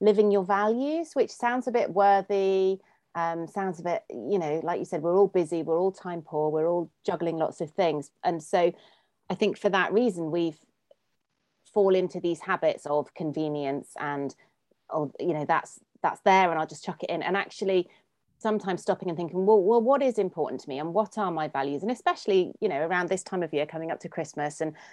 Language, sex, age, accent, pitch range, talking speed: English, female, 30-49, British, 165-200 Hz, 210 wpm